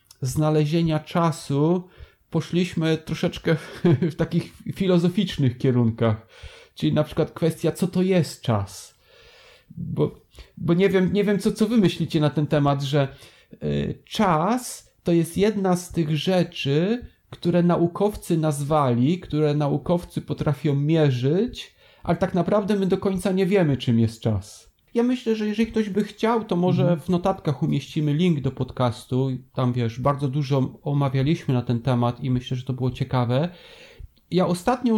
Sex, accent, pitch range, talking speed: male, native, 140-180 Hz, 145 wpm